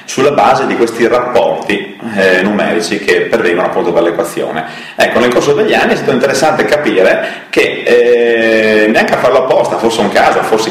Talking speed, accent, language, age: 170 wpm, native, Italian, 30-49